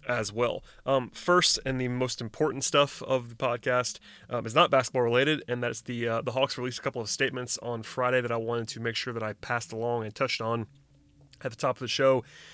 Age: 30-49